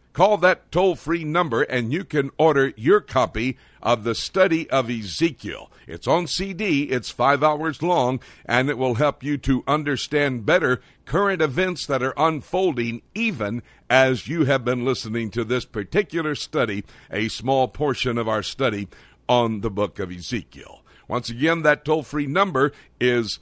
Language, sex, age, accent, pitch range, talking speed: English, male, 60-79, American, 125-160 Hz, 160 wpm